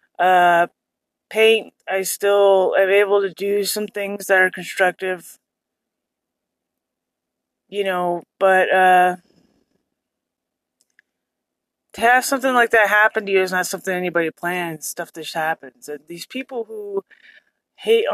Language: English